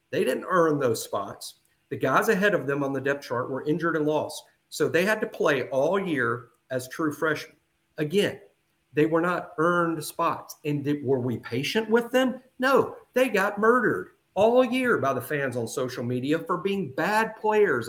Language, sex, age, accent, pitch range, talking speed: English, male, 50-69, American, 140-205 Hz, 190 wpm